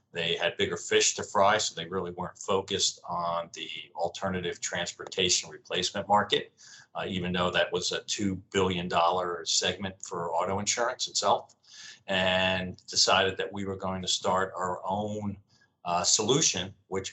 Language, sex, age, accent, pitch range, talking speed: English, male, 40-59, American, 90-100 Hz, 150 wpm